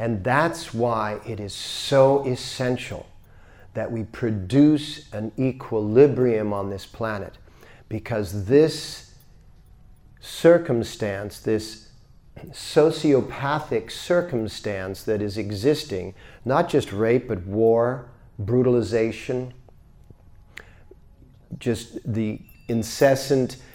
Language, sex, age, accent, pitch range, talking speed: English, male, 50-69, American, 110-135 Hz, 85 wpm